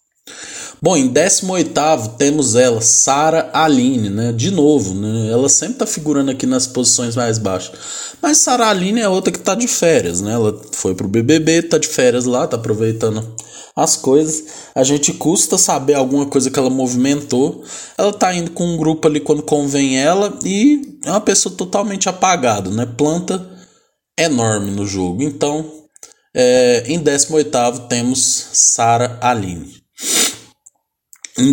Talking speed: 150 wpm